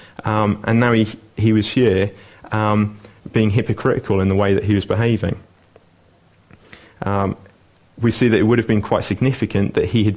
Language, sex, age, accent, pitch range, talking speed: English, male, 30-49, British, 100-110 Hz, 175 wpm